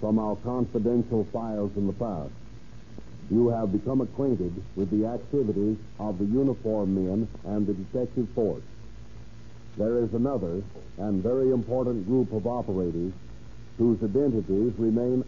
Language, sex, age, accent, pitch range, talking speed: English, male, 60-79, American, 105-120 Hz, 135 wpm